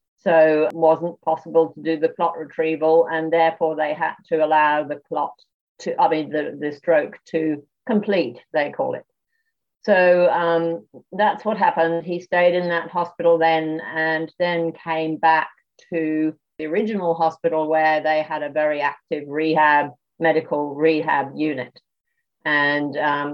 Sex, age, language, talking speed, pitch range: female, 50-69, English, 150 wpm, 155-165 Hz